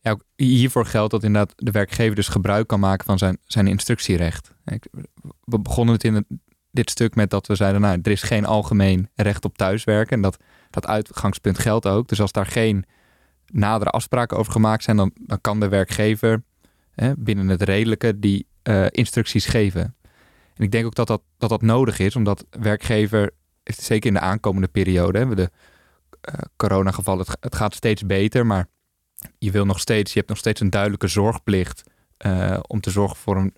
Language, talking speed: Dutch, 185 wpm